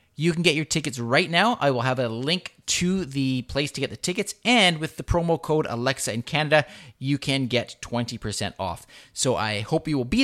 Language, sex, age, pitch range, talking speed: English, male, 20-39, 120-160 Hz, 225 wpm